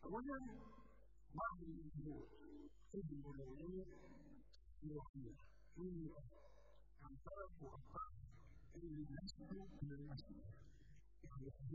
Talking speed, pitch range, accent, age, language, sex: 215 wpm, 150-195 Hz, American, 50-69, English, female